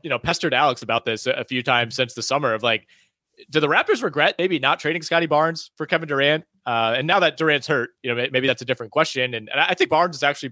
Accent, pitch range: American, 125-160 Hz